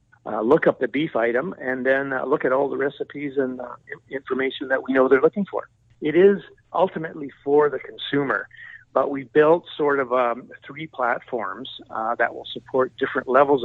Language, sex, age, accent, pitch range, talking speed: English, male, 50-69, American, 115-140 Hz, 190 wpm